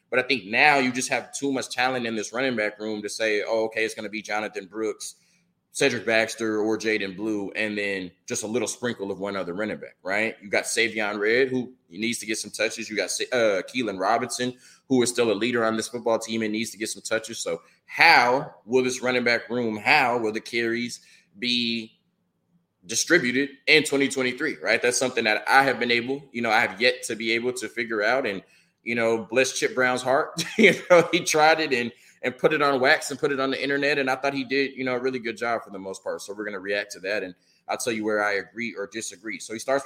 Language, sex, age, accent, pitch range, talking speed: English, male, 20-39, American, 110-130 Hz, 245 wpm